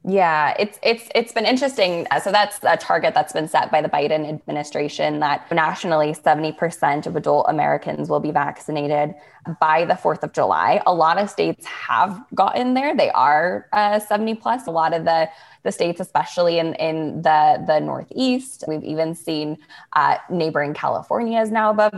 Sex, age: female, 20-39